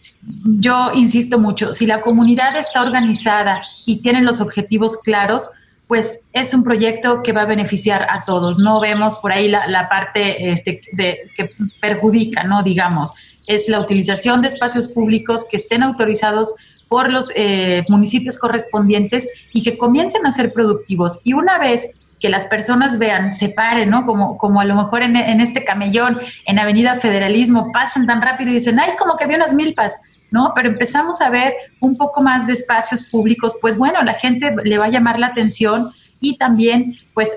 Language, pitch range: Spanish, 205-245 Hz